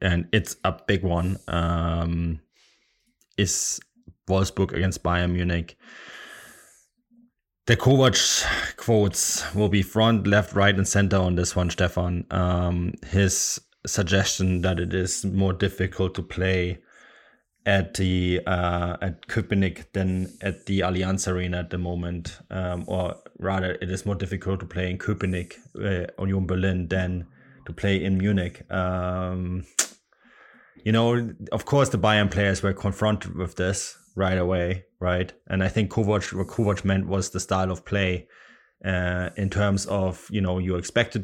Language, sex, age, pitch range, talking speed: English, male, 20-39, 90-100 Hz, 150 wpm